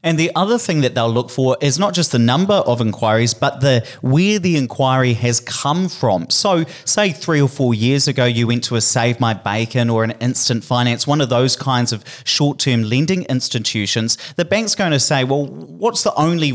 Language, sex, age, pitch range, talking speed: English, male, 30-49, 120-145 Hz, 210 wpm